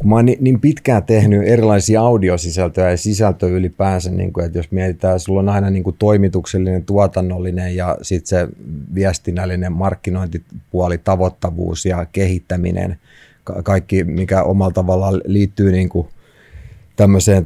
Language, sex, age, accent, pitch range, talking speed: Finnish, male, 30-49, native, 90-100 Hz, 135 wpm